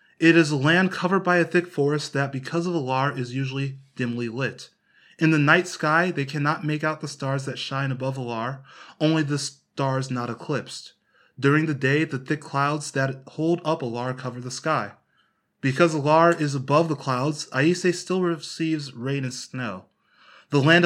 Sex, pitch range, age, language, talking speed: male, 135-165 Hz, 20-39, English, 180 wpm